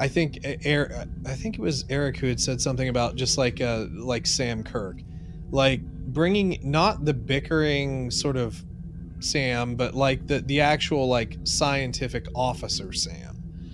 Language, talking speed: English, 155 wpm